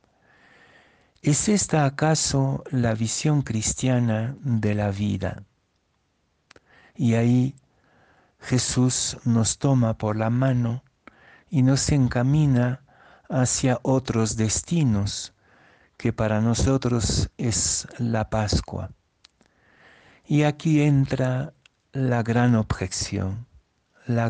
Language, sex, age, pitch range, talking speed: Spanish, male, 60-79, 105-130 Hz, 90 wpm